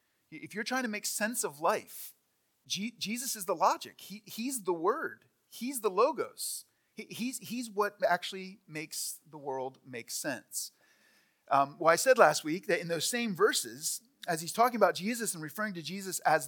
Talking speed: 180 wpm